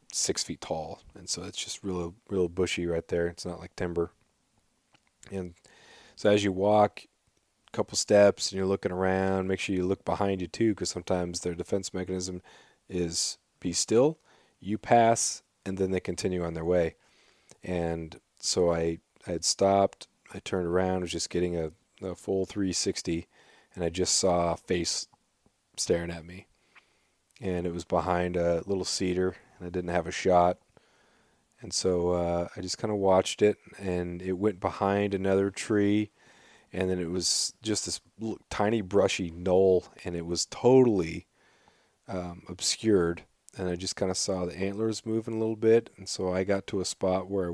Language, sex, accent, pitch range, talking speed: English, male, American, 90-100 Hz, 175 wpm